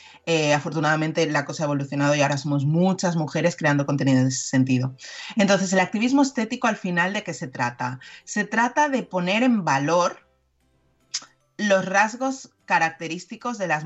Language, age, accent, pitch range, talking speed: Spanish, 30-49, Spanish, 150-205 Hz, 160 wpm